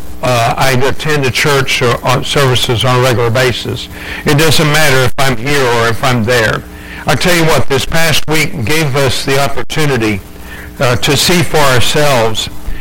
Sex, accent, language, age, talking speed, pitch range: male, American, English, 60-79, 180 wpm, 120-155 Hz